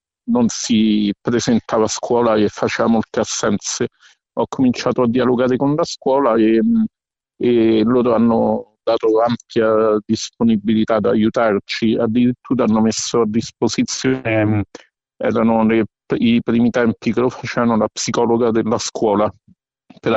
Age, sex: 50-69, male